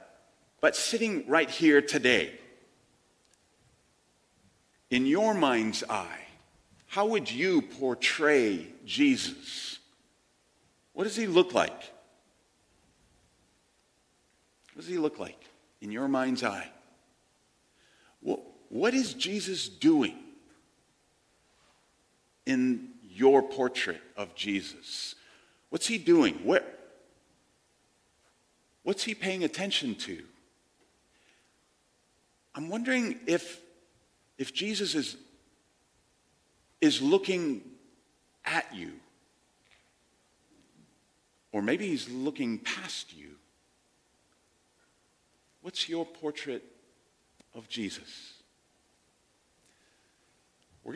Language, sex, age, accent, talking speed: English, male, 50-69, American, 80 wpm